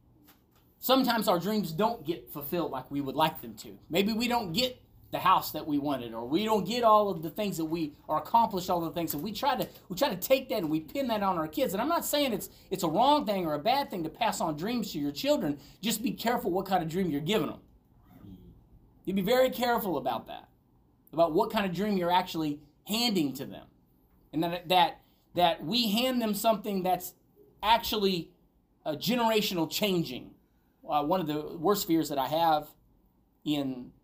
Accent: American